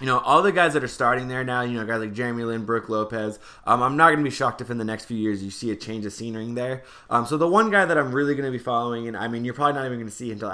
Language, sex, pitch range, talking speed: English, male, 105-125 Hz, 335 wpm